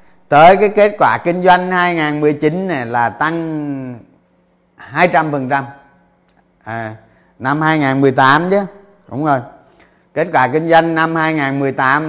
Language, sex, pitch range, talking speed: Vietnamese, male, 125-175 Hz, 115 wpm